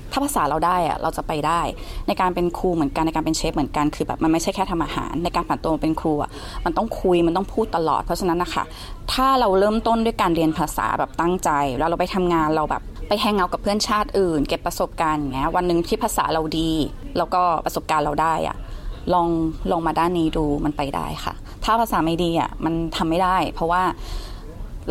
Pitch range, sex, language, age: 160-205 Hz, female, Thai, 20-39